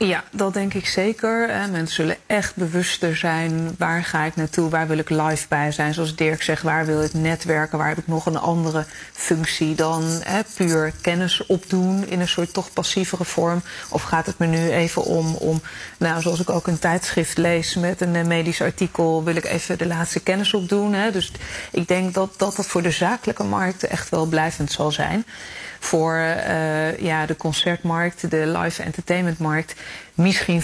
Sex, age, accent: female, 30-49, Dutch